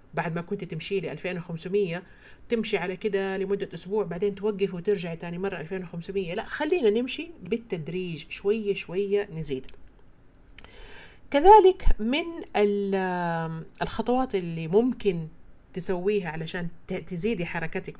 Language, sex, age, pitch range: Arabic, female, 40-59, 170-220 Hz